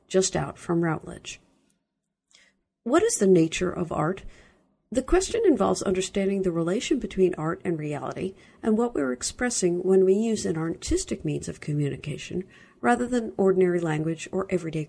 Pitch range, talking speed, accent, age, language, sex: 165-220 Hz, 155 wpm, American, 50-69, English, female